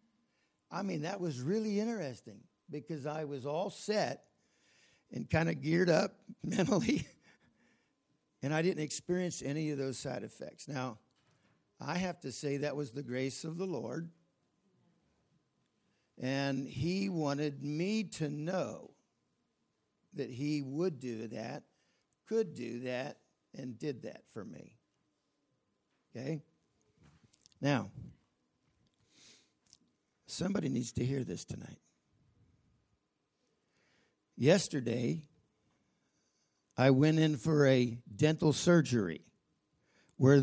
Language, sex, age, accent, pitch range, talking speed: English, male, 60-79, American, 135-180 Hz, 110 wpm